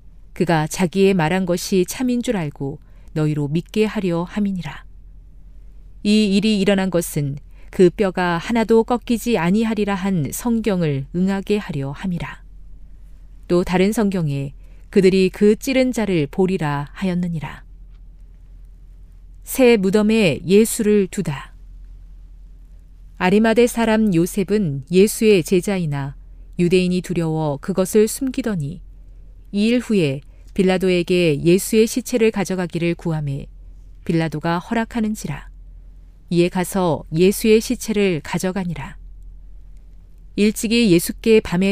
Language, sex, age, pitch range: Korean, female, 40-59, 140-205 Hz